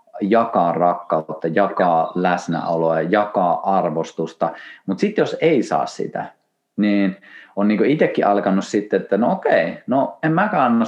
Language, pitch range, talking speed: Finnish, 90-135 Hz, 140 wpm